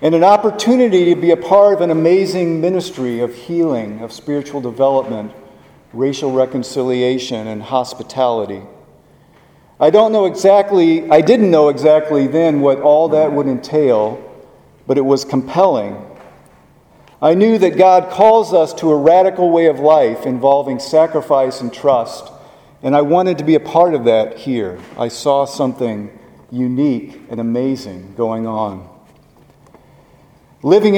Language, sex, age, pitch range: English, male, 50-69, 125-165 Hz